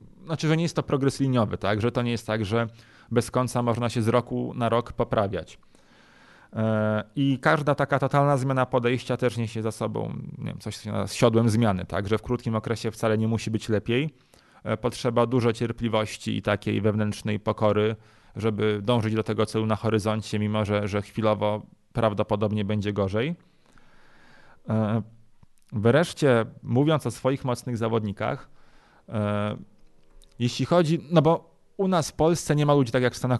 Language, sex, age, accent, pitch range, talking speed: Polish, male, 30-49, native, 105-125 Hz, 155 wpm